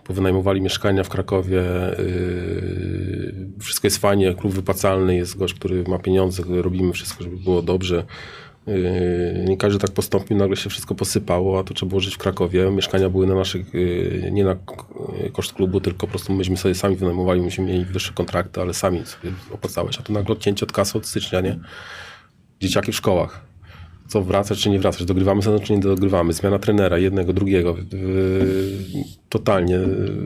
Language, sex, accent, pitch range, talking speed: Polish, male, native, 90-105 Hz, 175 wpm